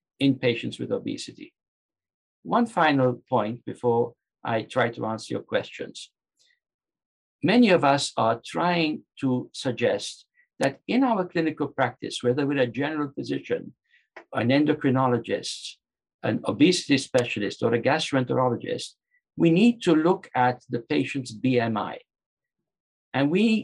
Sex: male